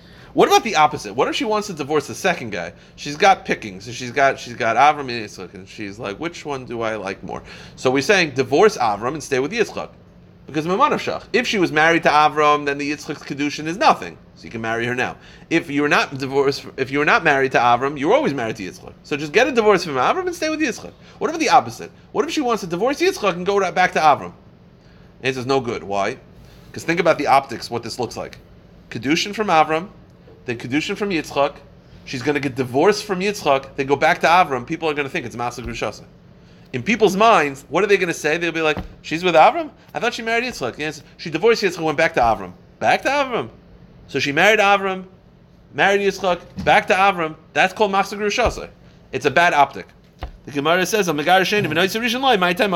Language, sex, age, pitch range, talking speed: English, male, 30-49, 135-195 Hz, 225 wpm